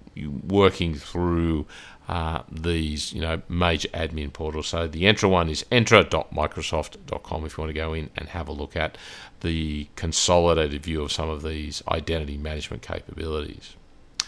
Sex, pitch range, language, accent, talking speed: male, 80-90 Hz, English, Australian, 150 wpm